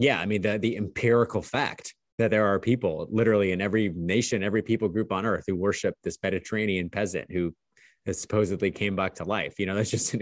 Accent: American